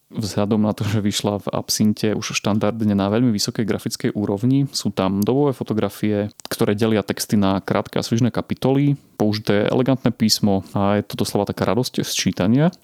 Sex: male